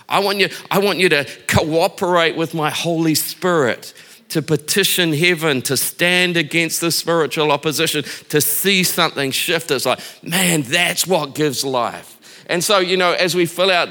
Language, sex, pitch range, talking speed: English, male, 150-180 Hz, 165 wpm